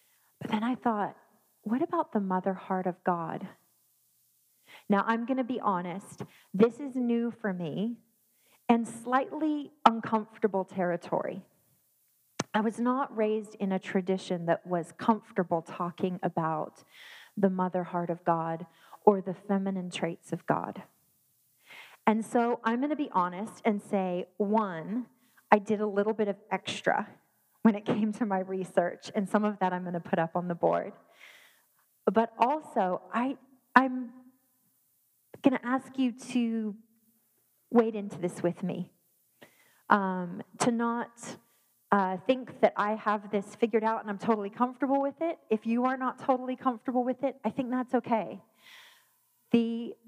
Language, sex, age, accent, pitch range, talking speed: English, female, 30-49, American, 190-240 Hz, 155 wpm